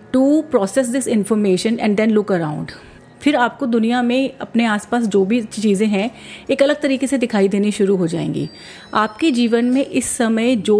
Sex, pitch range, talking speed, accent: female, 195-245 Hz, 185 wpm, native